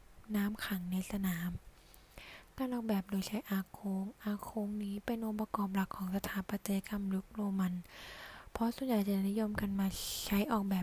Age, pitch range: 10-29, 190-220 Hz